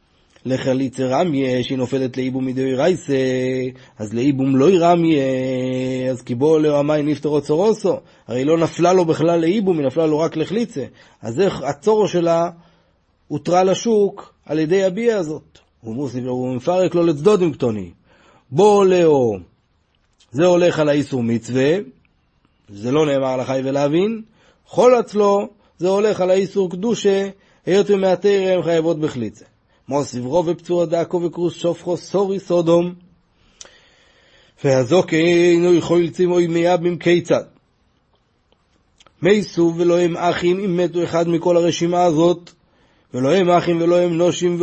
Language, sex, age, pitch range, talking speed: Hebrew, male, 30-49, 145-180 Hz, 130 wpm